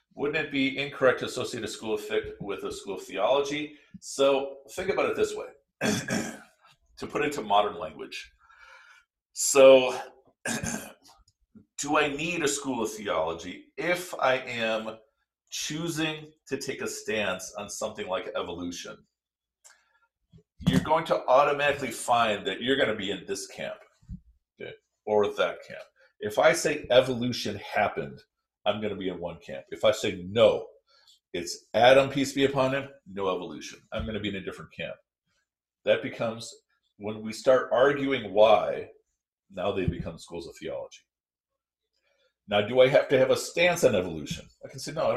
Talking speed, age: 160 wpm, 50-69